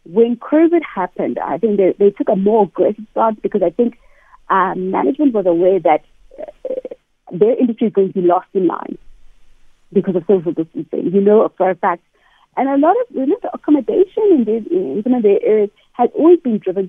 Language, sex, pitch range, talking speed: English, female, 185-290 Hz, 205 wpm